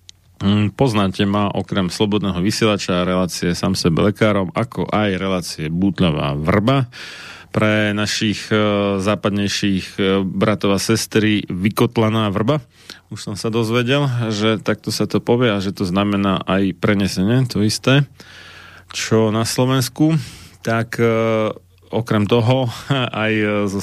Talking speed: 130 wpm